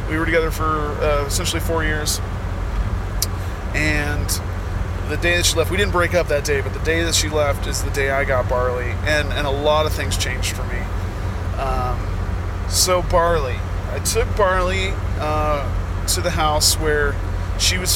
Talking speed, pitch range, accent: 180 wpm, 85-95 Hz, American